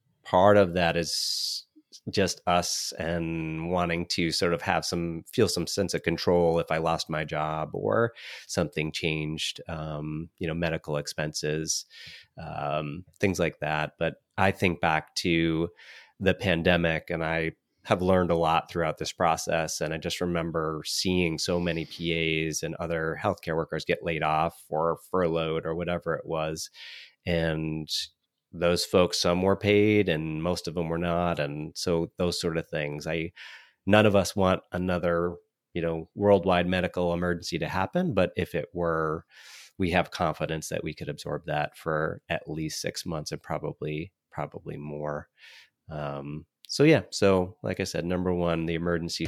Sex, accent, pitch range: male, American, 80-90 Hz